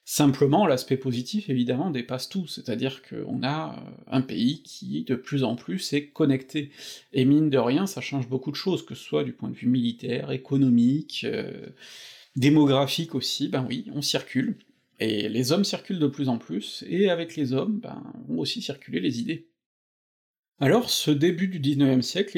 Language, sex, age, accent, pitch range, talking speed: French, male, 40-59, French, 130-170 Hz, 180 wpm